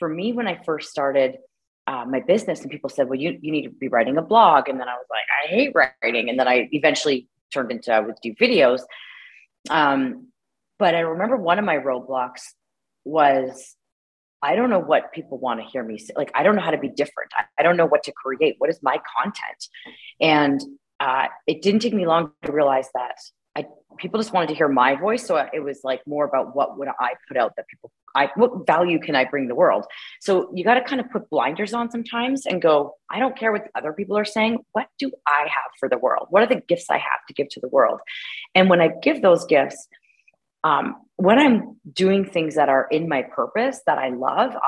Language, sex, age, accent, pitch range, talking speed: English, female, 30-49, American, 140-220 Hz, 230 wpm